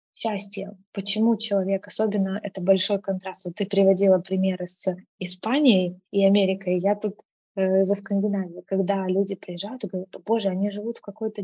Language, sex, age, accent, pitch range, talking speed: Russian, female, 20-39, native, 190-210 Hz, 155 wpm